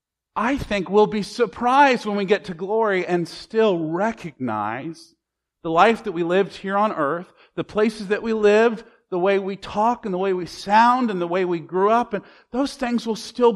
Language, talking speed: English, 205 wpm